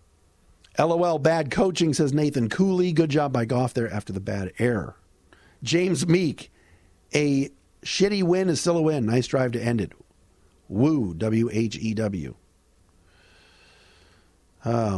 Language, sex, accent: English, male, American